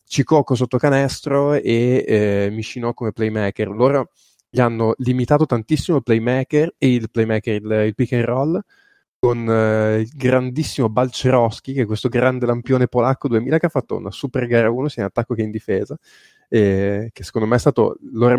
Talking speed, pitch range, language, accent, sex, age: 180 wpm, 110-130 Hz, Italian, native, male, 20-39